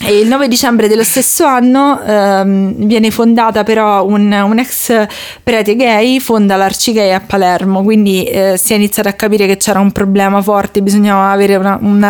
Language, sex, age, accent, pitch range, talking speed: Italian, female, 20-39, native, 195-230 Hz, 180 wpm